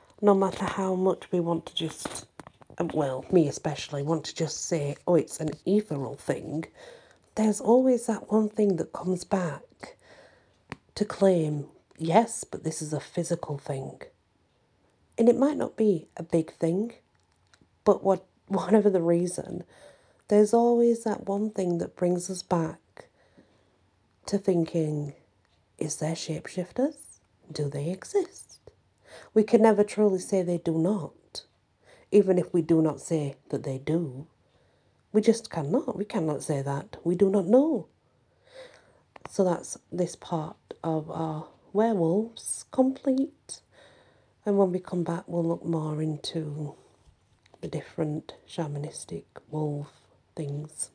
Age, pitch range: 40-59, 155-210 Hz